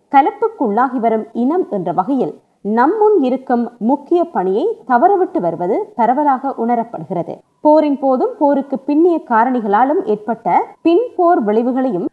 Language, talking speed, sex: Tamil, 55 wpm, female